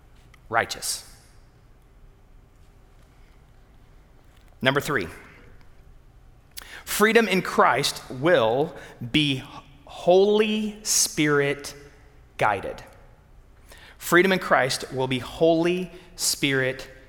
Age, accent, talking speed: 30-49, American, 65 wpm